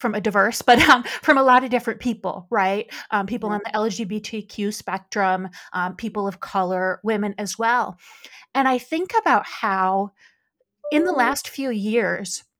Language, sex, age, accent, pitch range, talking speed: English, female, 30-49, American, 195-240 Hz, 165 wpm